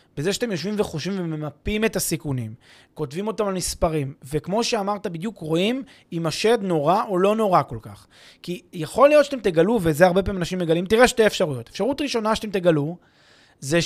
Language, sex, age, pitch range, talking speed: Hebrew, male, 20-39, 165-230 Hz, 180 wpm